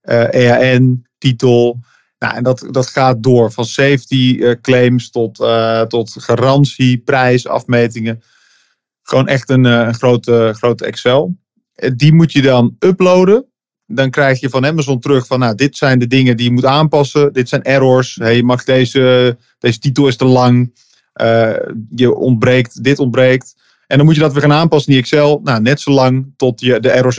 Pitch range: 120-140 Hz